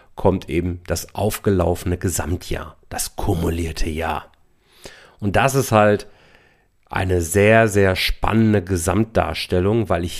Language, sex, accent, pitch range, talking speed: German, male, German, 90-115 Hz, 110 wpm